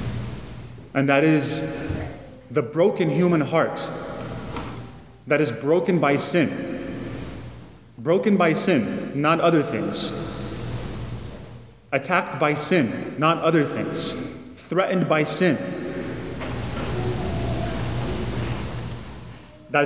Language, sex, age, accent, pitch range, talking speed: English, male, 30-49, American, 135-180 Hz, 85 wpm